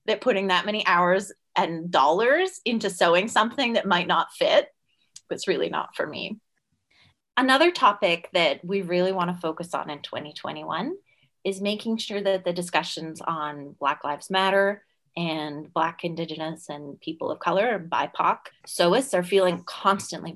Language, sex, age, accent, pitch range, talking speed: English, female, 30-49, American, 170-220 Hz, 150 wpm